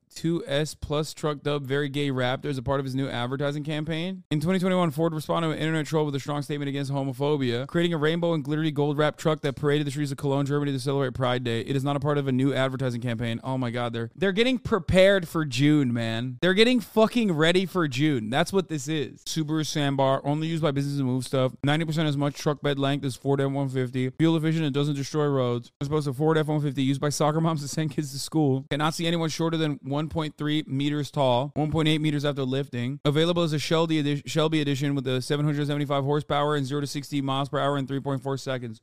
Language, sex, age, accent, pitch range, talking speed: English, male, 20-39, American, 140-160 Hz, 230 wpm